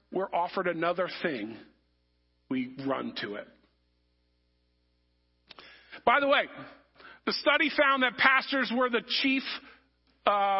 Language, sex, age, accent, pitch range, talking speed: English, male, 40-59, American, 175-270 Hz, 115 wpm